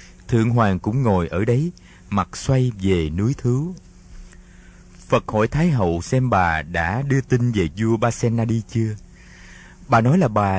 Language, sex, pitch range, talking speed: Vietnamese, male, 90-135 Hz, 170 wpm